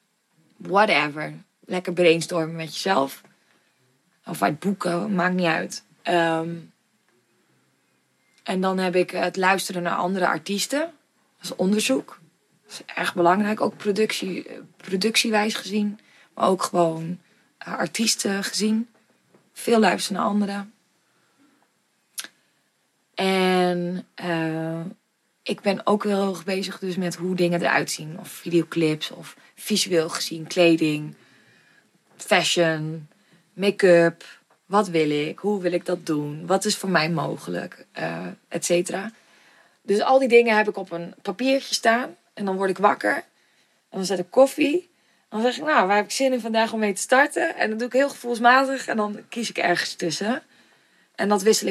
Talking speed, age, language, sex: 150 wpm, 20-39, Dutch, female